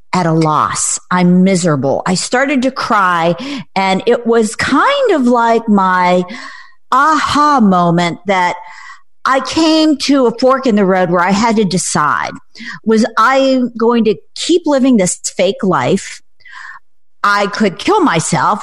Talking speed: 145 wpm